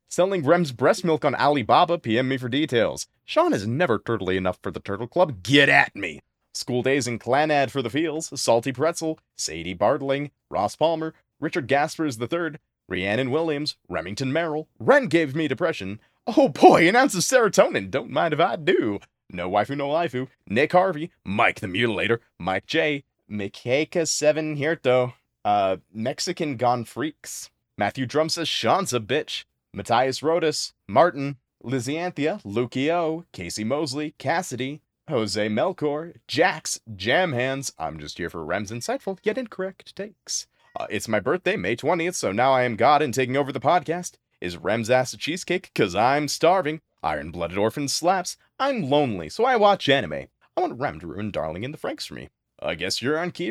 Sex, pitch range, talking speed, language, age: male, 115-160 Hz, 170 wpm, English, 30-49